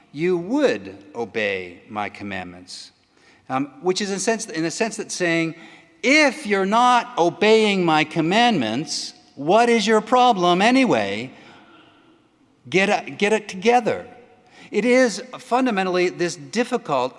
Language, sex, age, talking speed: English, male, 50-69, 120 wpm